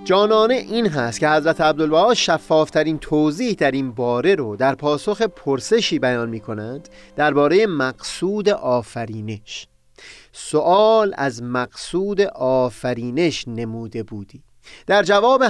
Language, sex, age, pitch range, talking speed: Persian, male, 30-49, 120-185 Hz, 115 wpm